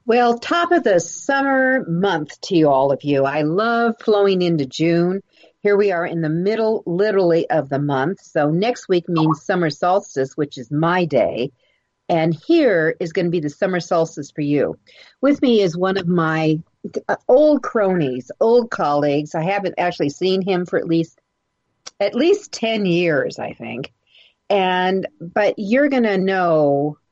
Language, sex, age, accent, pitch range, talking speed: English, female, 40-59, American, 150-200 Hz, 170 wpm